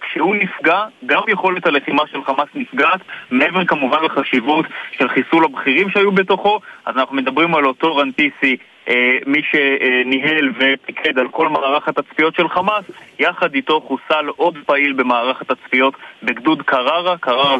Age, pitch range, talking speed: 30-49, 135-170 Hz, 140 wpm